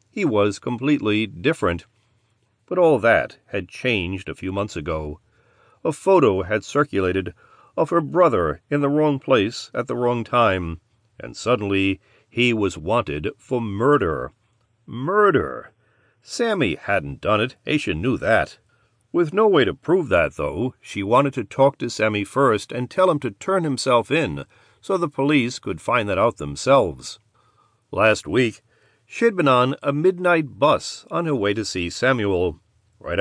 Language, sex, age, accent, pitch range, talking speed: English, male, 40-59, American, 95-135 Hz, 155 wpm